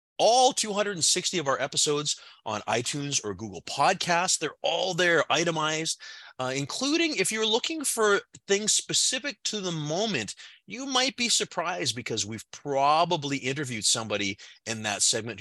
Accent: American